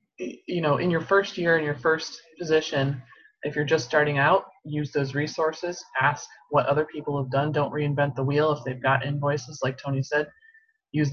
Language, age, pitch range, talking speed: English, 20-39, 135-160 Hz, 195 wpm